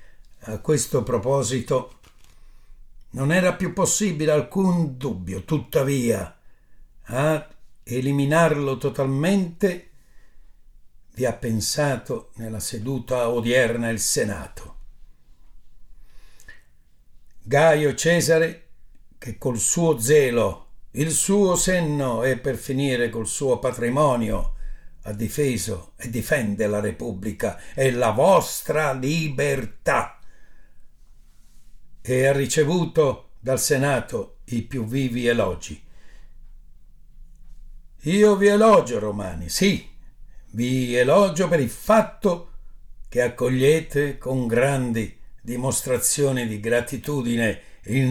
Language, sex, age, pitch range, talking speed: Italian, male, 60-79, 115-150 Hz, 90 wpm